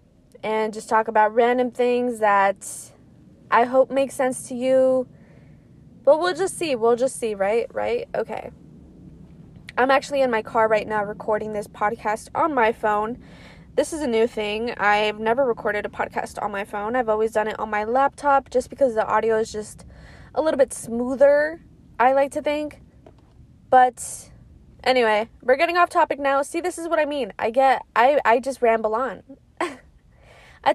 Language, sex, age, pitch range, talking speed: English, female, 20-39, 220-280 Hz, 175 wpm